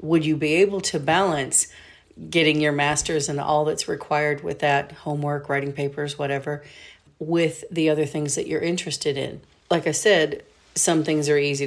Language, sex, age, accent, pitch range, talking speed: English, female, 40-59, American, 140-160 Hz, 175 wpm